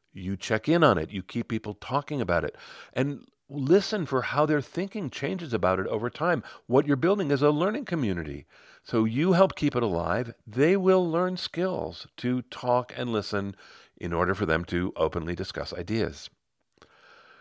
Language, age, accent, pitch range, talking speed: English, 50-69, American, 95-145 Hz, 175 wpm